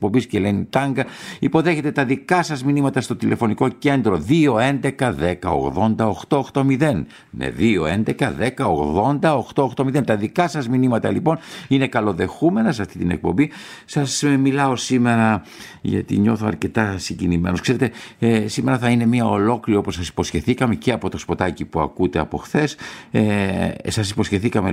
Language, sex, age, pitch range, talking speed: Greek, male, 60-79, 85-125 Hz, 130 wpm